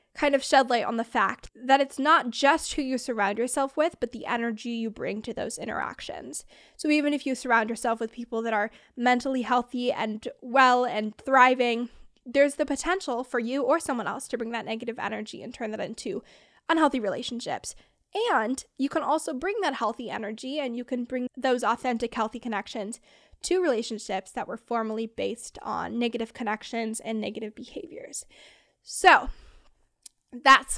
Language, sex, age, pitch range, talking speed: English, female, 10-29, 230-280 Hz, 175 wpm